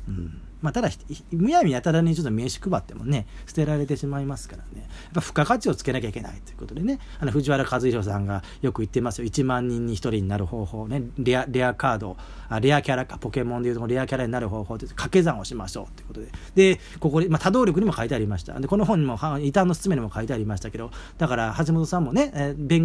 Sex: male